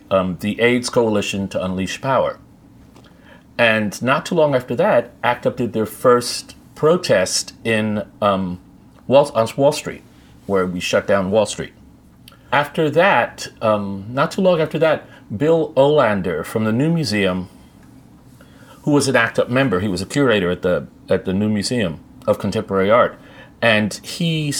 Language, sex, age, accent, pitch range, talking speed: English, male, 40-59, American, 105-145 Hz, 160 wpm